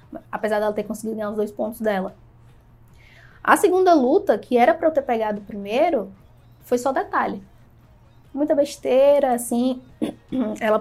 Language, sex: Portuguese, female